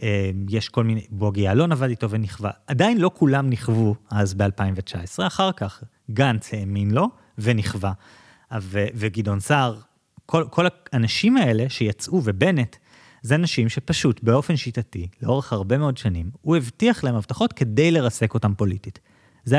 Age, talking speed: 30-49, 145 wpm